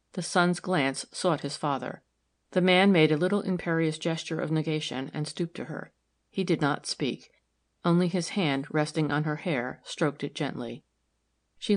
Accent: American